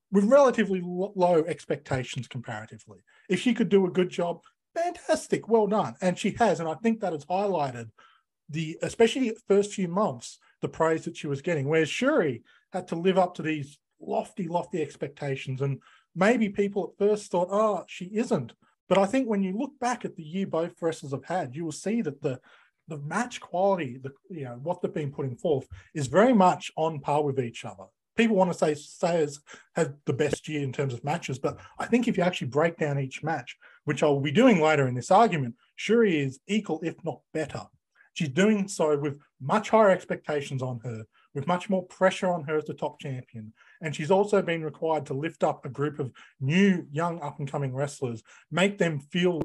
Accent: Australian